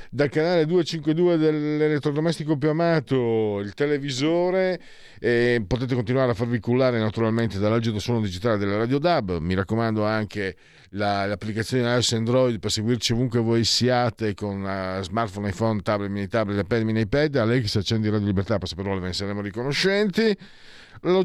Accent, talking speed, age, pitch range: native, 165 wpm, 50-69, 105-155 Hz